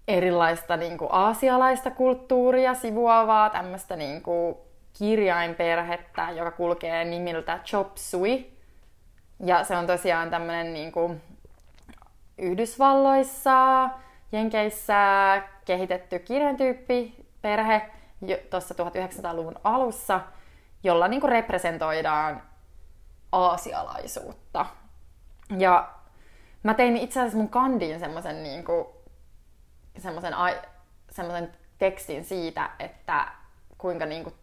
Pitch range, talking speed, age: 165-215 Hz, 75 wpm, 20-39